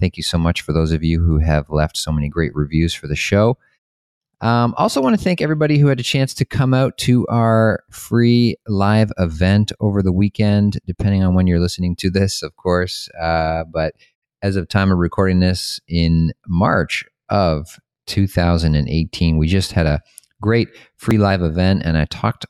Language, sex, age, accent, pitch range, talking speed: English, male, 30-49, American, 80-100 Hz, 190 wpm